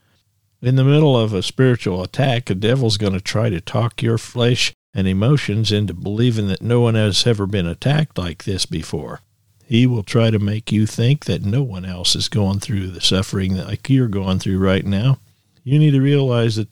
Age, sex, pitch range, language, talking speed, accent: 50-69, male, 100-125 Hz, English, 205 wpm, American